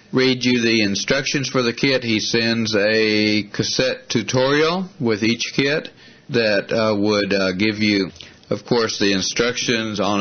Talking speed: 155 wpm